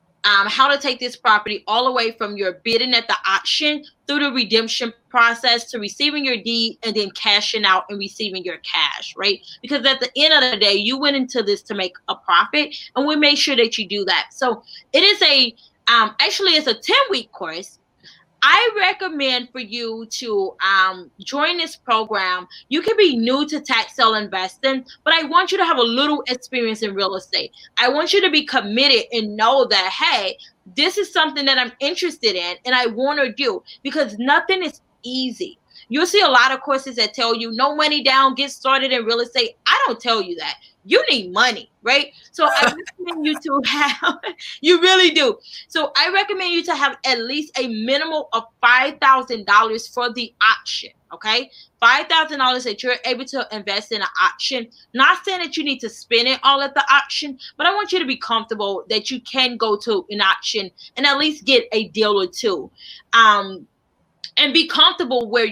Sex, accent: female, American